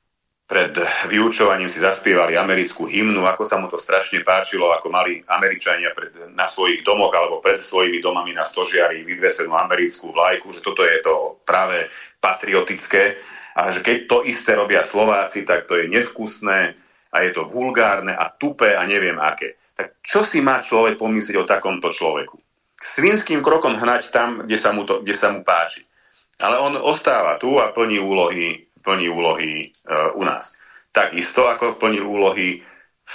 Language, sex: Slovak, male